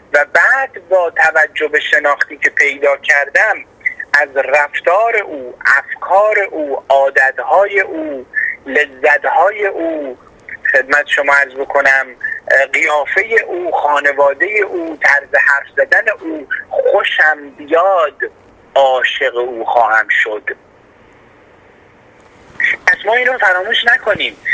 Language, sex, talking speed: Persian, male, 100 wpm